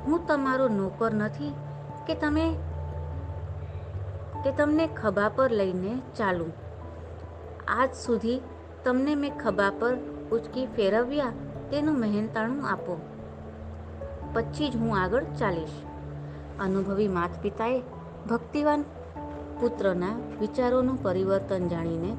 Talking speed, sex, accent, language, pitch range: 70 wpm, female, native, Gujarati, 145-245 Hz